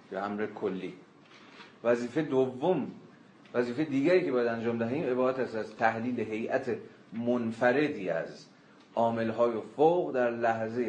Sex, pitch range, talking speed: male, 105-130 Hz, 115 wpm